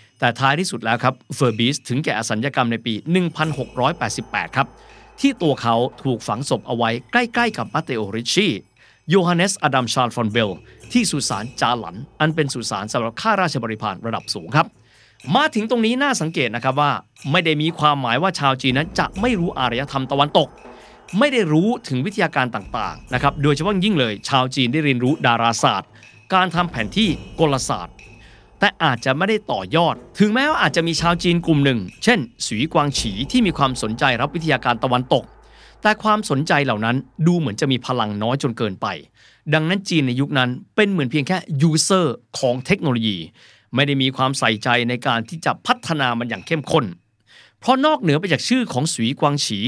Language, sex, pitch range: Thai, male, 120-170 Hz